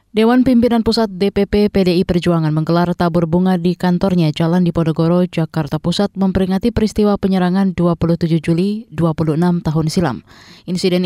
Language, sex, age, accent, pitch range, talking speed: Indonesian, female, 20-39, native, 165-195 Hz, 130 wpm